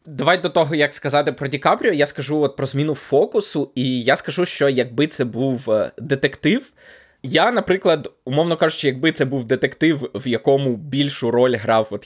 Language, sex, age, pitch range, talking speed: Ukrainian, male, 20-39, 130-160 Hz, 180 wpm